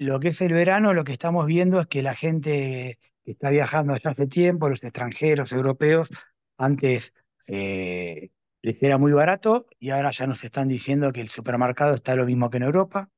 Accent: Argentinian